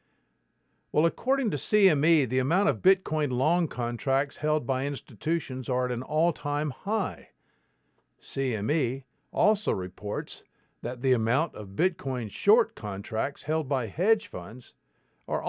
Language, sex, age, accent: English, male, 50-69, American